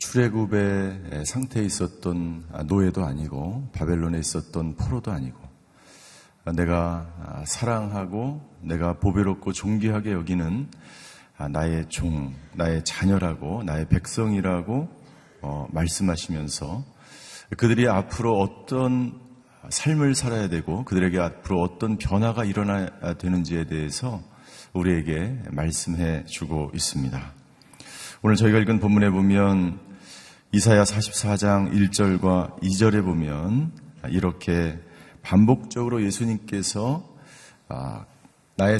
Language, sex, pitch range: Korean, male, 85-110 Hz